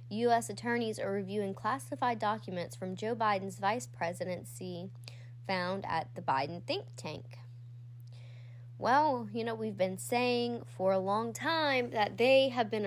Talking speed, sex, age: 145 wpm, female, 10-29